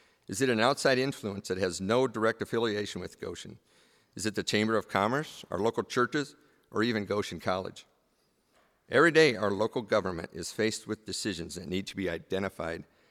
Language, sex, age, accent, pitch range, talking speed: English, male, 50-69, American, 95-125 Hz, 180 wpm